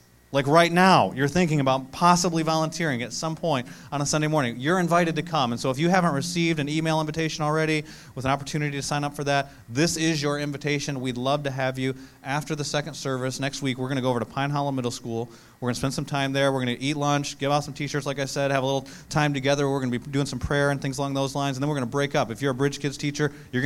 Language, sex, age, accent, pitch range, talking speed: English, male, 30-49, American, 120-145 Hz, 270 wpm